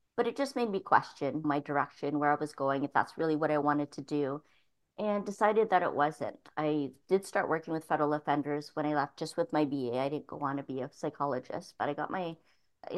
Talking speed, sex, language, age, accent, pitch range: 240 wpm, female, English, 40-59, American, 150-180 Hz